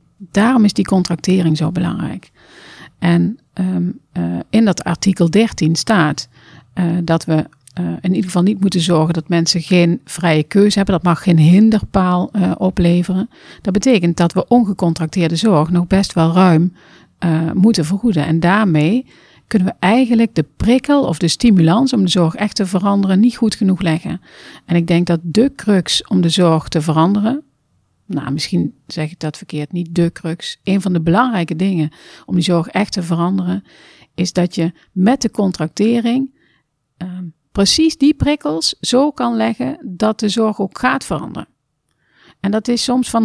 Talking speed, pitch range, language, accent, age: 170 wpm, 165-215 Hz, Dutch, Dutch, 50-69